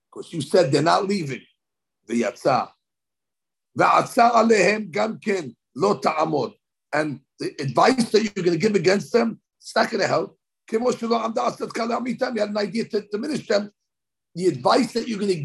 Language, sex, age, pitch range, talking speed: English, male, 60-79, 175-230 Hz, 135 wpm